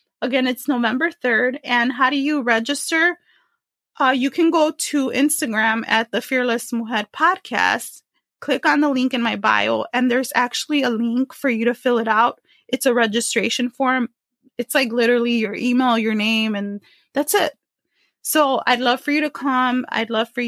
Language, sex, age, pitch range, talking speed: English, female, 20-39, 240-290 Hz, 180 wpm